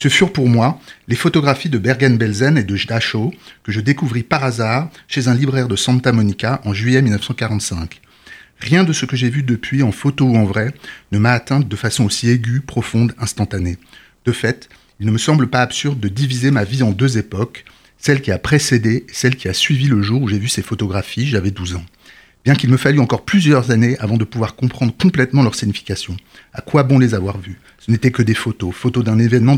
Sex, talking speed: male, 220 wpm